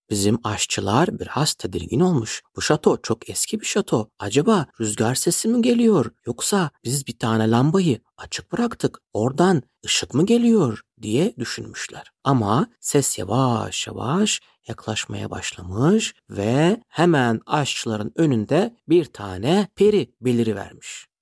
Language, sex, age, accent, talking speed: Turkish, male, 60-79, native, 120 wpm